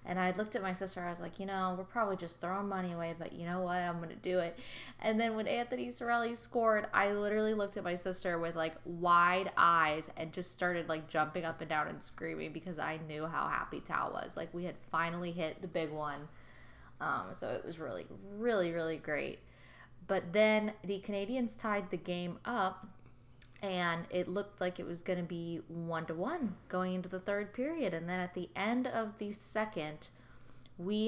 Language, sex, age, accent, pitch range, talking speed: English, female, 20-39, American, 165-205 Hz, 205 wpm